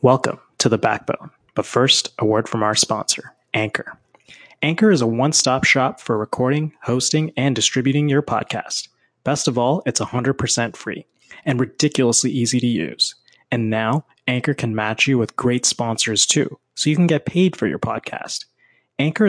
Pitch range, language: 115-140 Hz, English